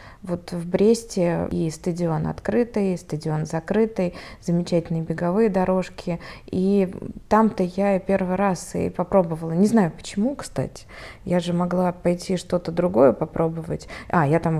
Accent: native